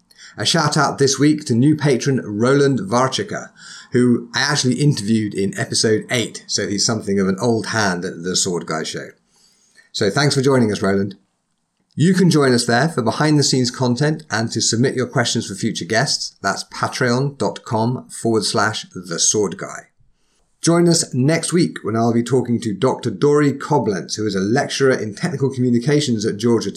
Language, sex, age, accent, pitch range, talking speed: English, male, 30-49, British, 105-135 Hz, 180 wpm